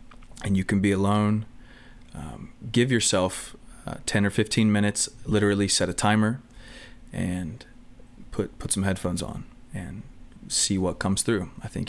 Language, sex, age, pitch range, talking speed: English, male, 20-39, 95-115 Hz, 150 wpm